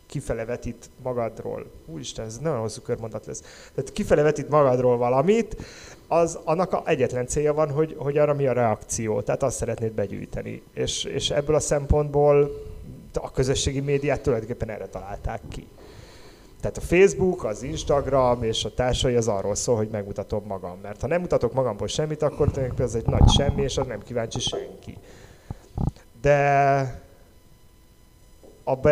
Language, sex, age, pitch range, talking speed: Hungarian, male, 30-49, 110-145 Hz, 150 wpm